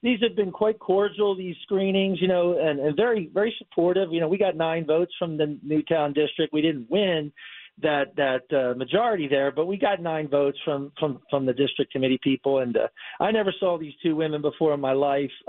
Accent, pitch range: American, 140-180 Hz